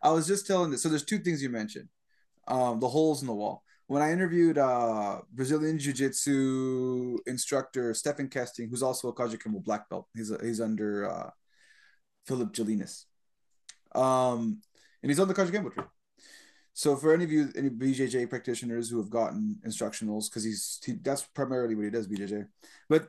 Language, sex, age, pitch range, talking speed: English, male, 20-39, 125-175 Hz, 175 wpm